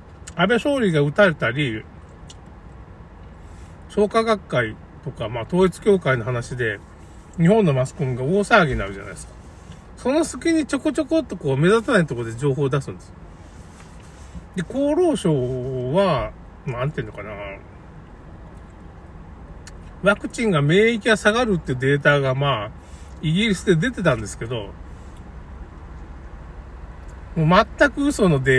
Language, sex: Japanese, male